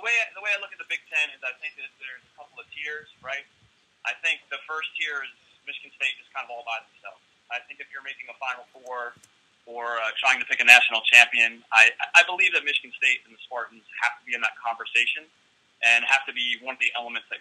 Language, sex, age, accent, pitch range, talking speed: English, male, 30-49, American, 120-160 Hz, 250 wpm